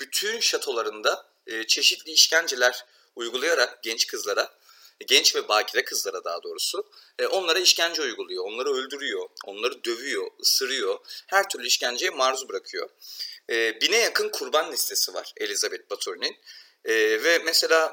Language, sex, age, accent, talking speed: Turkish, male, 40-59, native, 130 wpm